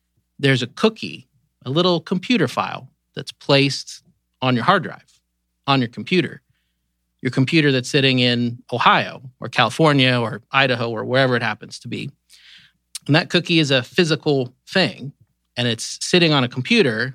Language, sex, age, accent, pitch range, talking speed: English, male, 40-59, American, 115-145 Hz, 160 wpm